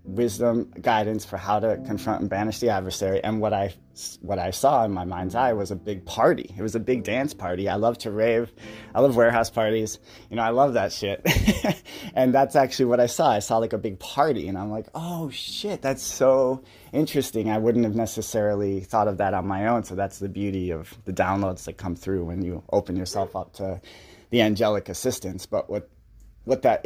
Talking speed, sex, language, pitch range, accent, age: 215 wpm, male, English, 95-120 Hz, American, 30-49